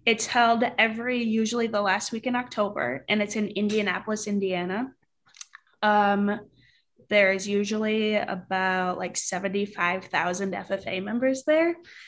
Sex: female